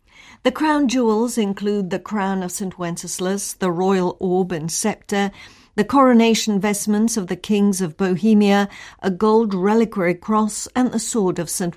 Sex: female